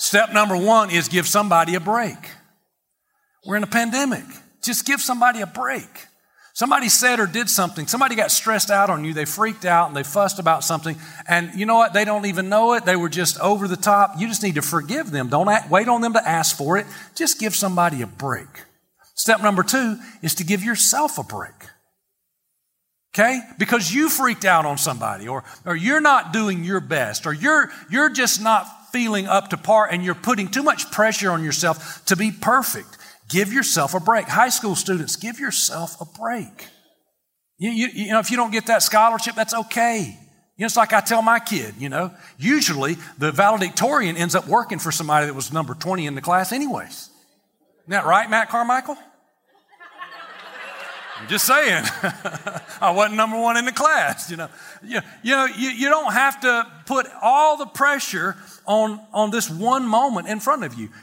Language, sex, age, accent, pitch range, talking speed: English, male, 40-59, American, 170-235 Hz, 195 wpm